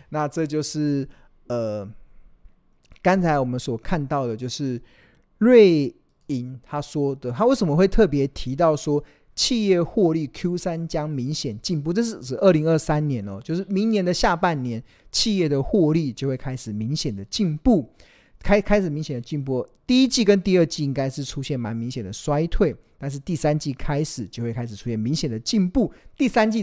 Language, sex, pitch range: Chinese, male, 130-175 Hz